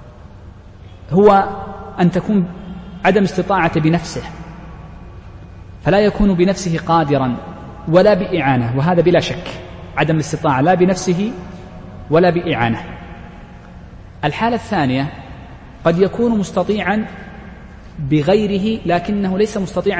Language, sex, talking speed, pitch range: Arabic, male, 90 wpm, 140-190 Hz